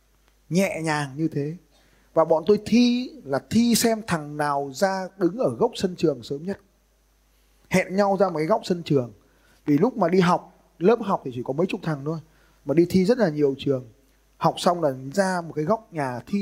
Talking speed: 215 wpm